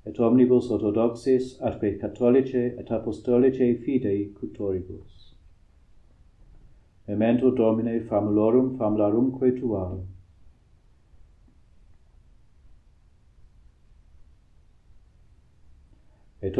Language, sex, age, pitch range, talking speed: English, male, 50-69, 105-125 Hz, 55 wpm